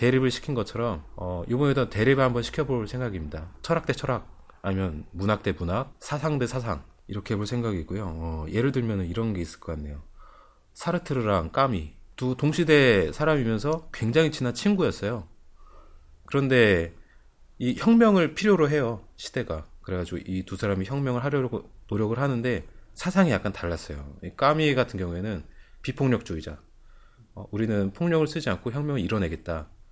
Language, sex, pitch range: Korean, male, 90-140 Hz